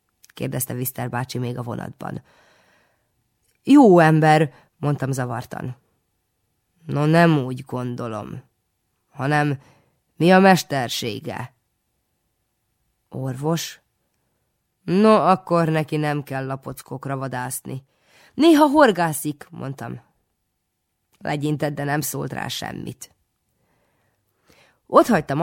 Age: 20-39